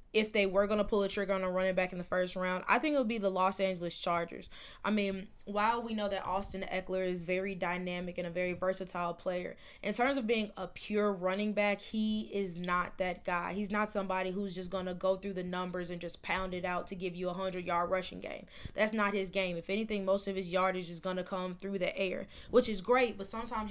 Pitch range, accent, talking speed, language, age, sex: 180-200 Hz, American, 250 wpm, English, 20-39, female